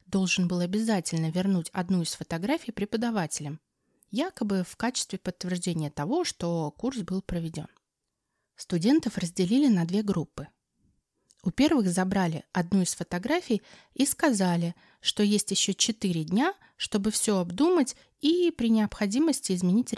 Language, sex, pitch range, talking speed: Russian, female, 180-225 Hz, 125 wpm